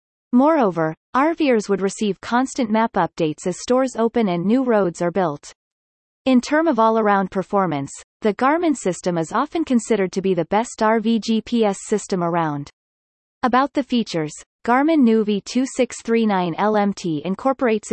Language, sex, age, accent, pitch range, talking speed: English, female, 30-49, American, 175-245 Hz, 140 wpm